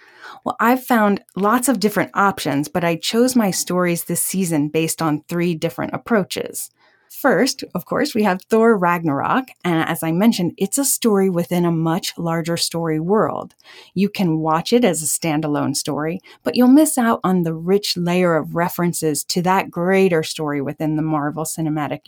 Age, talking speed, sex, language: 30-49, 175 wpm, female, English